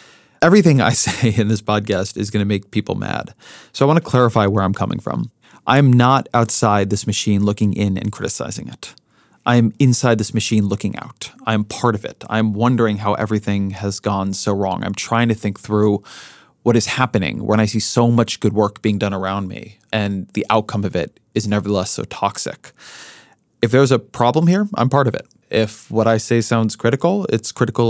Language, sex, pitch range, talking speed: English, male, 105-120 Hz, 200 wpm